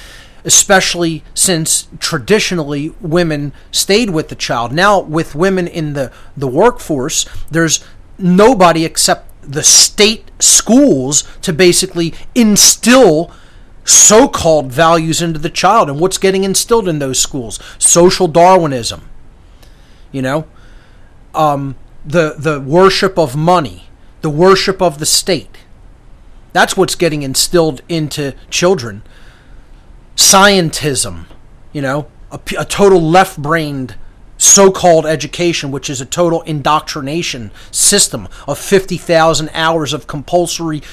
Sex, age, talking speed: male, 30-49, 115 wpm